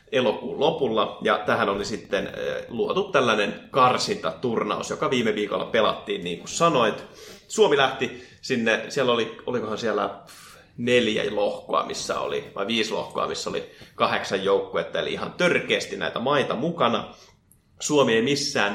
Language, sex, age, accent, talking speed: Finnish, male, 30-49, native, 140 wpm